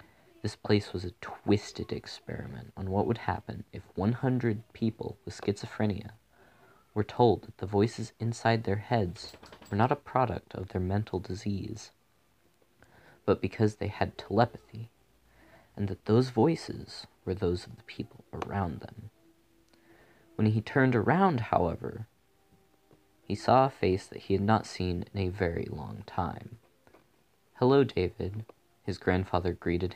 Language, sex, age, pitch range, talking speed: English, male, 30-49, 95-115 Hz, 140 wpm